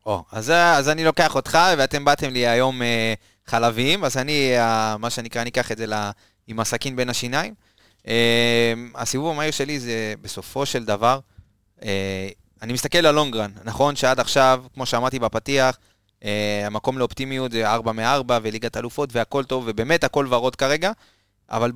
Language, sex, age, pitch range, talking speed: Hebrew, male, 20-39, 110-140 Hz, 165 wpm